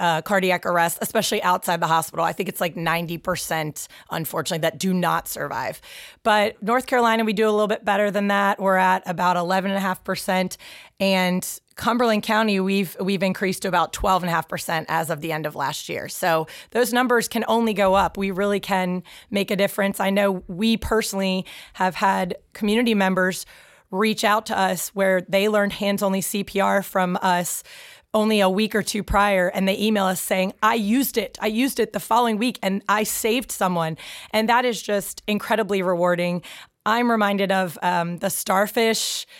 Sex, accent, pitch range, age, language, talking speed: female, American, 185-215 Hz, 20-39, English, 175 wpm